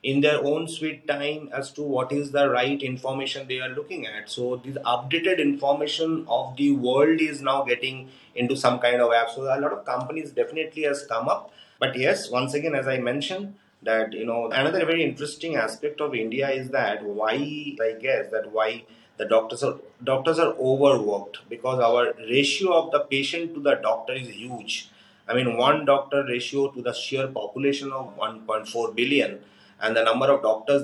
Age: 30-49